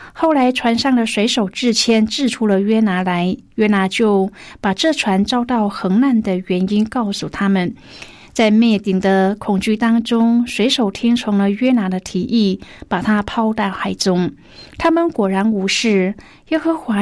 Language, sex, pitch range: Chinese, female, 195-240 Hz